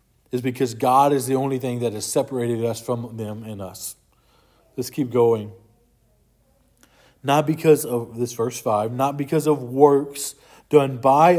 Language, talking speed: English, 160 wpm